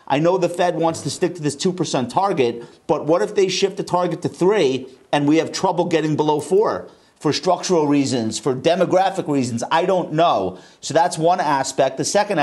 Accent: American